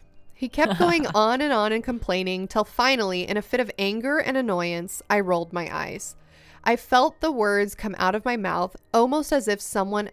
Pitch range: 190-245 Hz